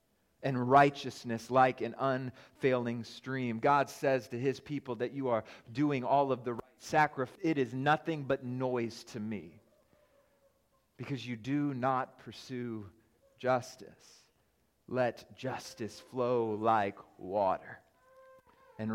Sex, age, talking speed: male, 30-49, 125 wpm